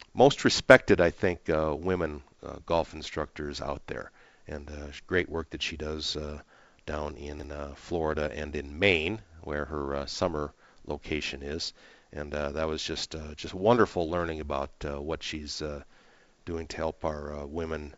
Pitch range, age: 75-85 Hz, 50-69